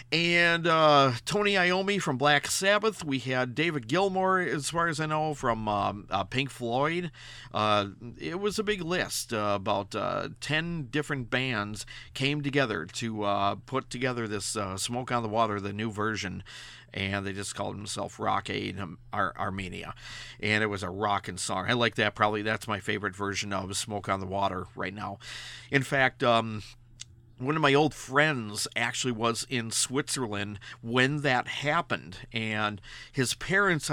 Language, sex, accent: English, male, American